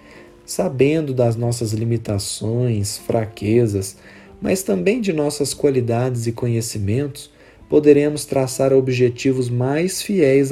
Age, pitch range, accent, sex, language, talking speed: 40-59, 120-155 Hz, Brazilian, male, Portuguese, 95 wpm